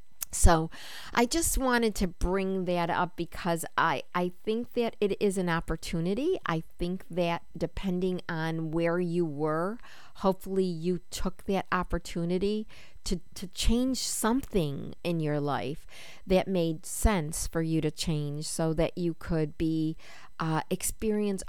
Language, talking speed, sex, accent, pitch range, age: English, 140 wpm, female, American, 150-180 Hz, 50-69